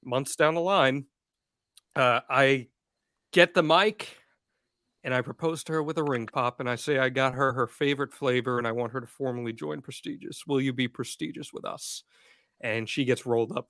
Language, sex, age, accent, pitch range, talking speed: English, male, 40-59, American, 125-160 Hz, 200 wpm